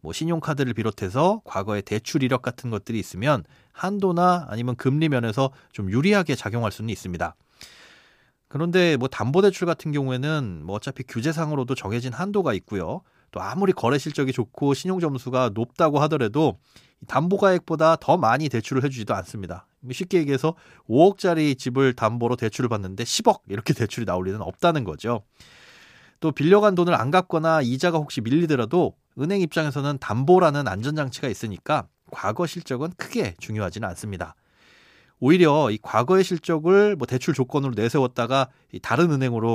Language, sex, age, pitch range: Korean, male, 30-49, 110-160 Hz